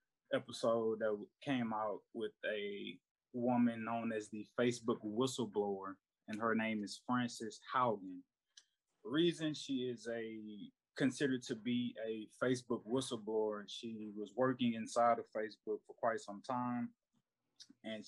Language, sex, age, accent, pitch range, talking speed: English, male, 20-39, American, 110-125 Hz, 135 wpm